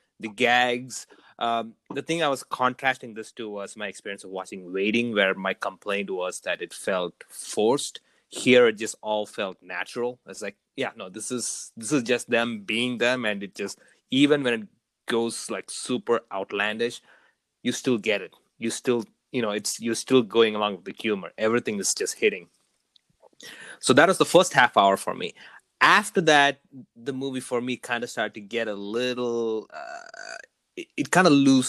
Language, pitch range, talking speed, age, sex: English, 110-135 Hz, 185 wpm, 30-49, male